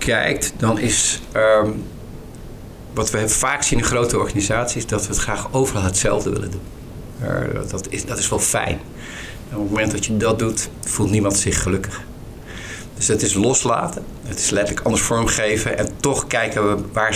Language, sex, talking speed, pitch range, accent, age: Dutch, male, 185 wpm, 100-120 Hz, Dutch, 50-69